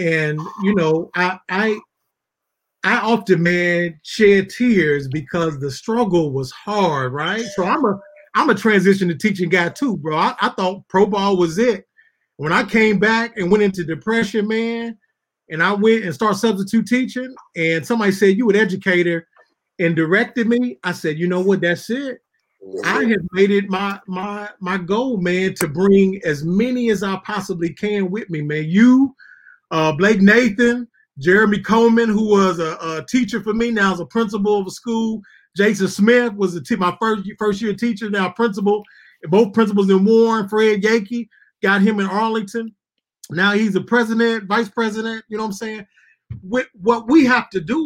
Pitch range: 180-225 Hz